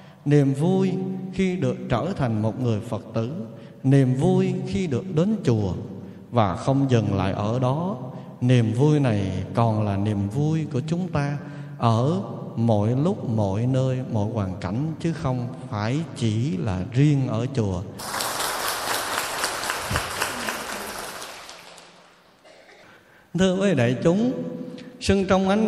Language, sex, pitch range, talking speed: Vietnamese, male, 120-175 Hz, 130 wpm